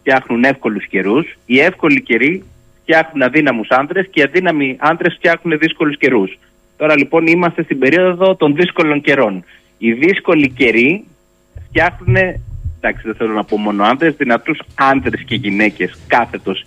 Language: Greek